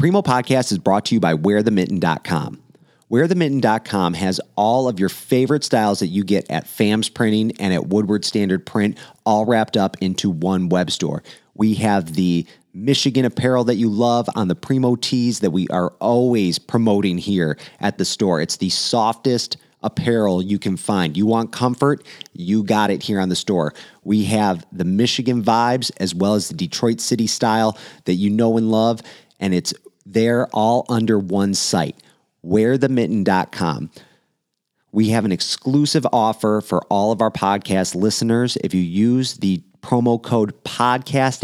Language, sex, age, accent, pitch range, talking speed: English, male, 30-49, American, 95-120 Hz, 165 wpm